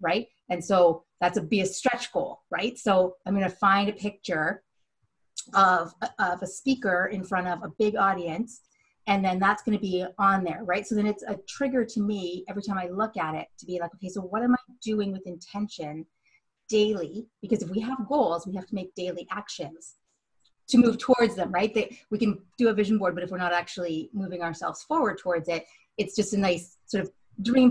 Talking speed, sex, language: 220 wpm, female, English